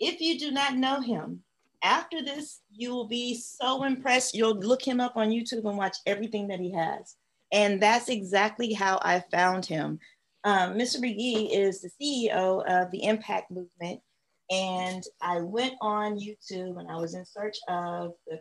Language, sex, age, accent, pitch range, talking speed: English, female, 40-59, American, 170-215 Hz, 175 wpm